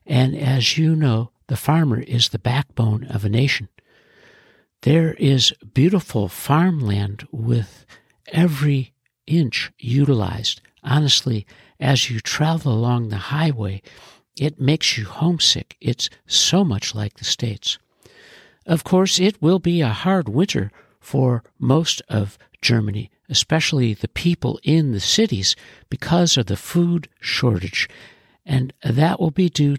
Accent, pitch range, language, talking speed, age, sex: American, 115-160 Hz, English, 130 wpm, 60-79, male